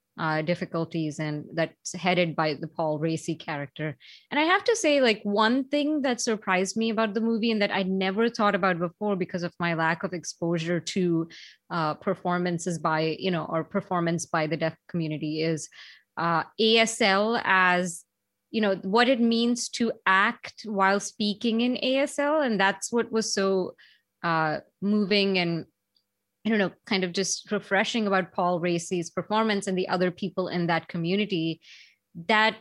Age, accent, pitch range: 30-49, Indian, 165-205 Hz